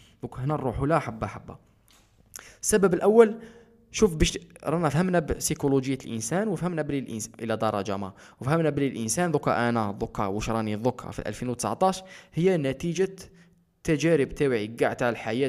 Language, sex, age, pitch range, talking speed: Arabic, male, 20-39, 110-160 Hz, 145 wpm